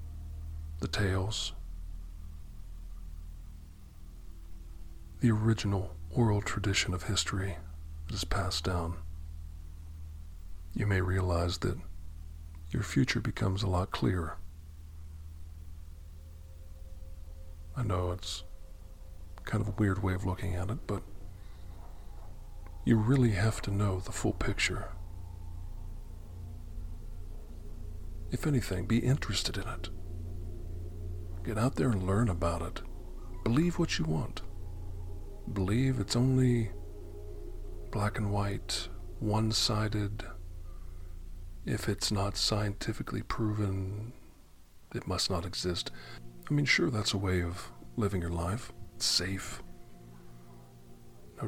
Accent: American